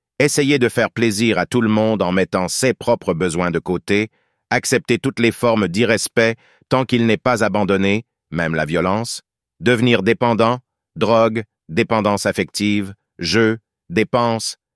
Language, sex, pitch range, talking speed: French, male, 100-120 Hz, 140 wpm